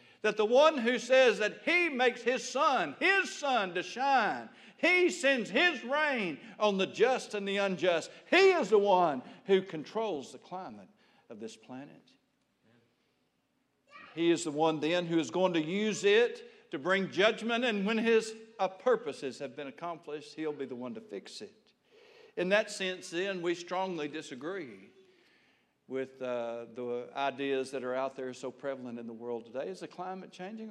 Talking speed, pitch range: 170 wpm, 150-235 Hz